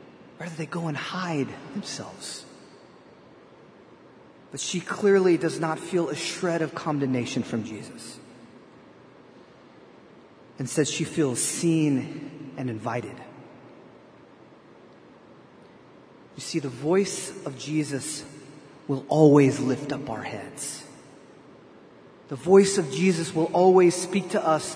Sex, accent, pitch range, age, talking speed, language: male, American, 140-170 Hz, 30-49, 110 wpm, English